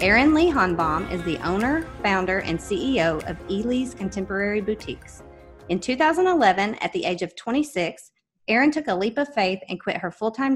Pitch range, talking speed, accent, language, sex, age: 185-250 Hz, 170 wpm, American, English, female, 30-49